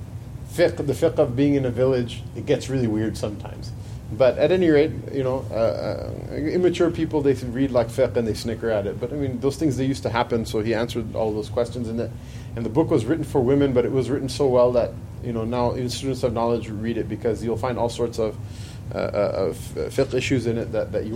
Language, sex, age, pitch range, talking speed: English, male, 30-49, 115-140 Hz, 250 wpm